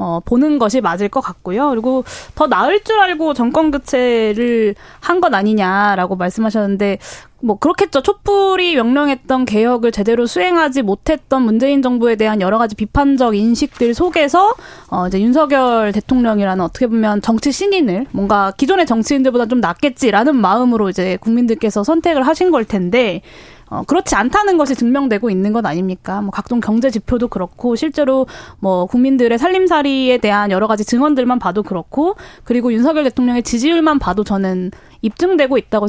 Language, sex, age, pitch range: Korean, female, 20-39, 210-280 Hz